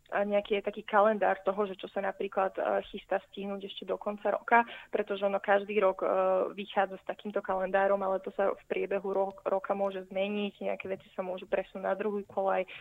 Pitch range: 195-215 Hz